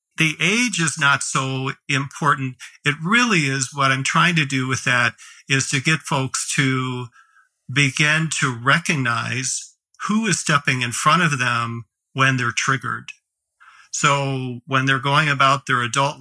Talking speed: 150 wpm